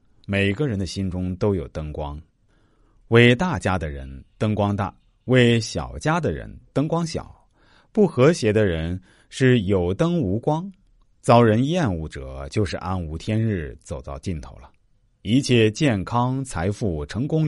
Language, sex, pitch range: Chinese, male, 80-115 Hz